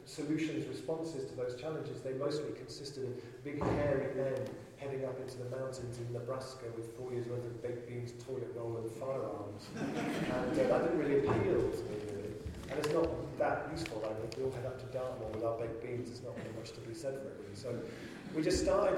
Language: English